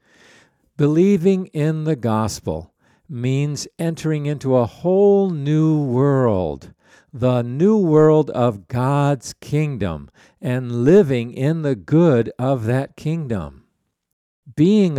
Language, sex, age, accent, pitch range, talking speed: English, male, 60-79, American, 120-155 Hz, 105 wpm